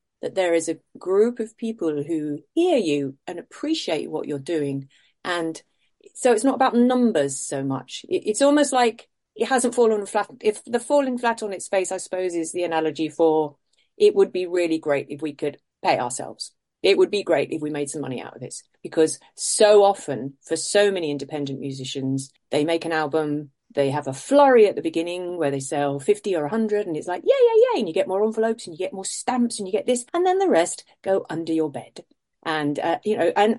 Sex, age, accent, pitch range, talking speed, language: female, 40-59, British, 155-235 Hz, 220 wpm, English